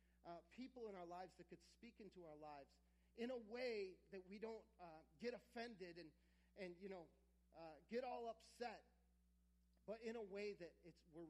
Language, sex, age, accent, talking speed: English, male, 40-59, American, 185 wpm